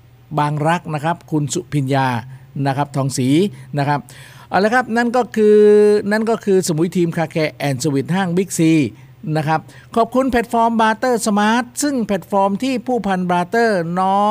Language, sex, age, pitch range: Thai, male, 50-69, 155-200 Hz